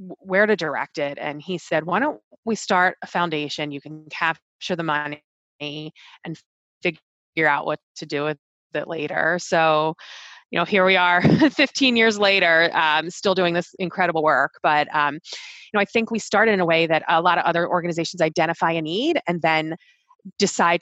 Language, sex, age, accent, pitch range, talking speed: English, female, 20-39, American, 155-195 Hz, 185 wpm